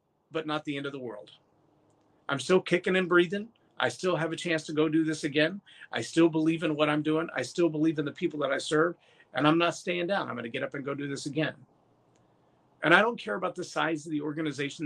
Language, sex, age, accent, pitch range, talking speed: English, male, 40-59, American, 155-180 Hz, 250 wpm